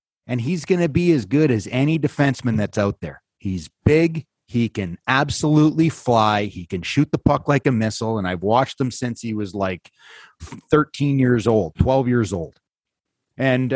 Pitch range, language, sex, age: 110-155 Hz, English, male, 30-49